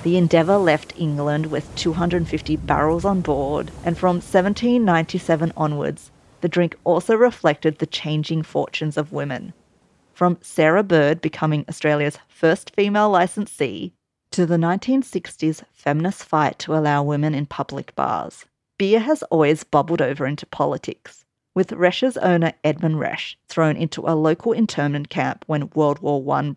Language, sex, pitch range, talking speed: English, female, 150-185 Hz, 140 wpm